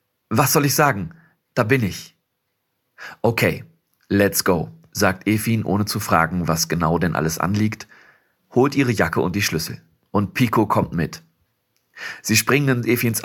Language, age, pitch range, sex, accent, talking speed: German, 40-59, 95-130 Hz, male, German, 155 wpm